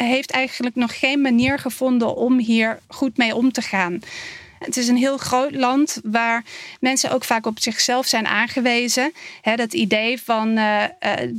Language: Dutch